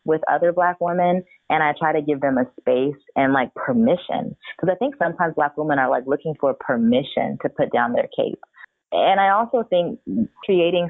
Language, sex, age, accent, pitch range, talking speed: English, female, 20-39, American, 130-175 Hz, 200 wpm